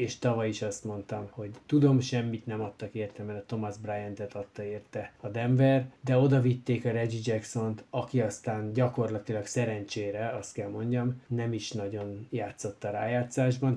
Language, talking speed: Hungarian, 160 wpm